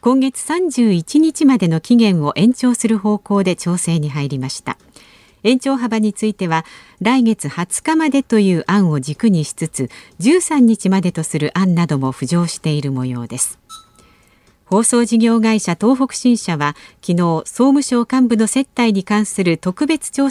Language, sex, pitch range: Japanese, female, 170-250 Hz